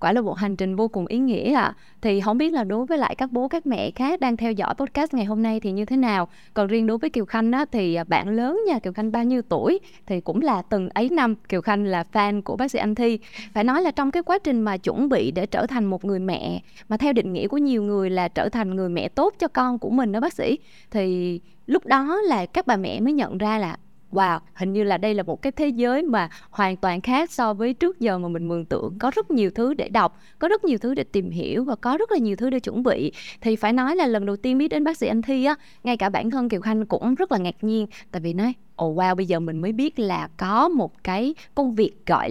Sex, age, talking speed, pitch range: female, 20-39, 285 wpm, 195-255 Hz